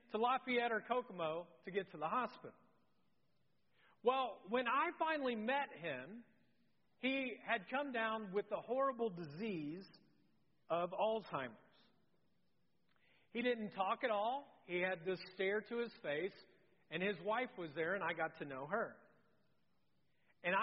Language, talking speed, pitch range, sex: English, 145 wpm, 175-245 Hz, male